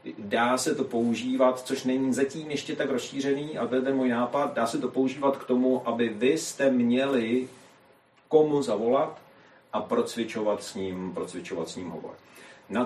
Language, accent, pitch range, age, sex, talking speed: Czech, native, 110-130 Hz, 40-59, male, 175 wpm